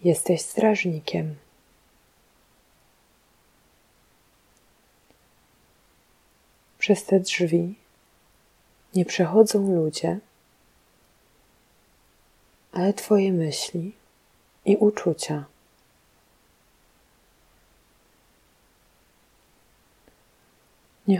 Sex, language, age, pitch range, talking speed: female, Polish, 30-49, 160-195 Hz, 40 wpm